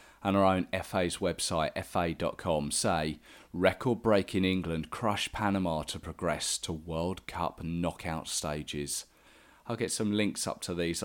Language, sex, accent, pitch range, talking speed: English, male, British, 85-110 Hz, 135 wpm